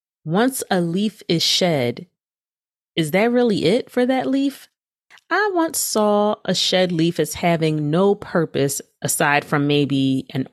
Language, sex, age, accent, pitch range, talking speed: English, female, 30-49, American, 150-195 Hz, 150 wpm